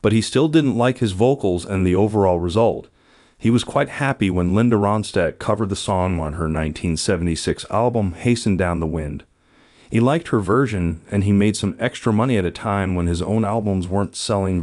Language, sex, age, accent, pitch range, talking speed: English, male, 40-59, American, 90-115 Hz, 195 wpm